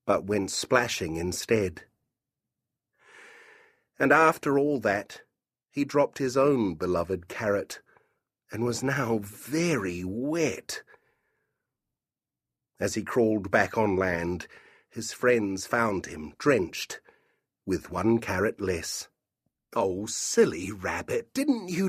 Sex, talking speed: male, 105 wpm